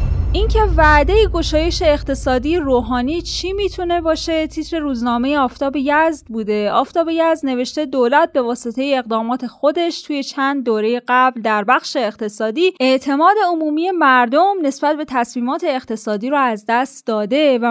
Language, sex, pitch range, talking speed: Persian, female, 230-300 Hz, 135 wpm